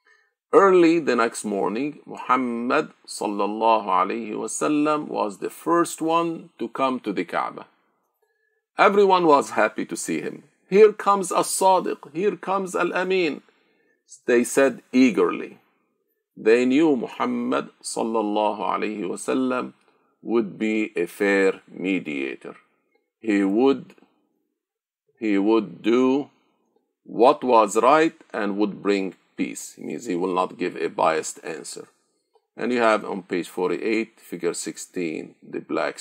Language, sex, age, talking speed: Arabic, male, 50-69, 115 wpm